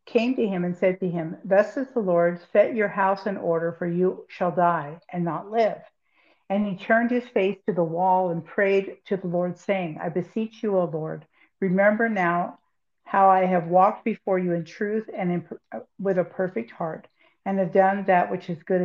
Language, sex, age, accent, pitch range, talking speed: English, female, 60-79, American, 180-205 Hz, 205 wpm